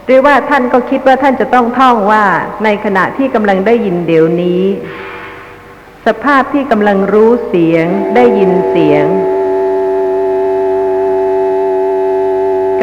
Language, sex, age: Thai, female, 60-79